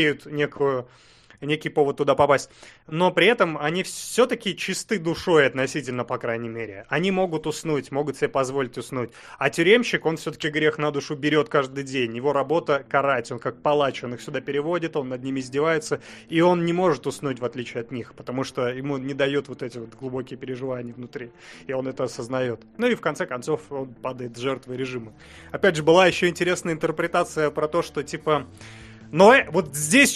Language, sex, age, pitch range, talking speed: Russian, male, 30-49, 135-170 Hz, 185 wpm